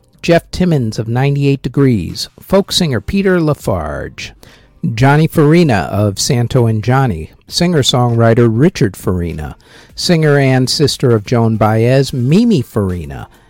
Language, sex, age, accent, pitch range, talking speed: English, male, 50-69, American, 105-150 Hz, 115 wpm